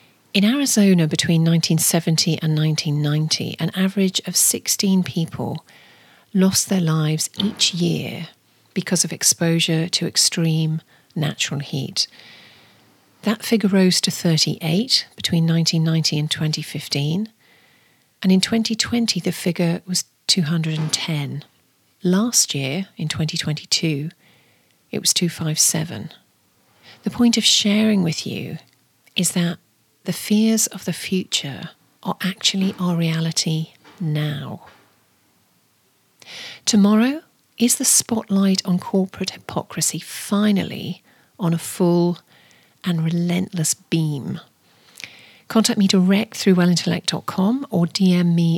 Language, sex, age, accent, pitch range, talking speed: English, female, 40-59, British, 160-195 Hz, 105 wpm